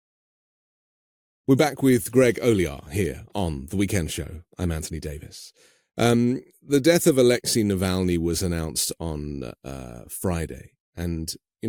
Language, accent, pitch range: English, British, 85-120 Hz